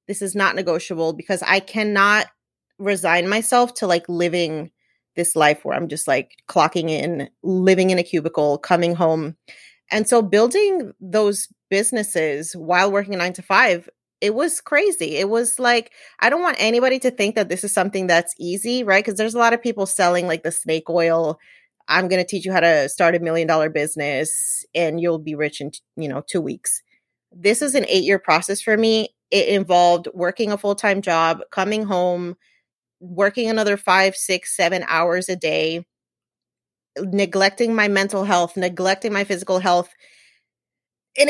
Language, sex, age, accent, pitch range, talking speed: English, female, 30-49, American, 175-225 Hz, 175 wpm